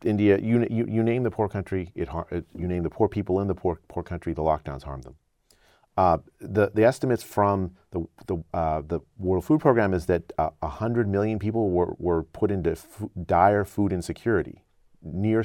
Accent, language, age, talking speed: American, English, 40-59, 200 wpm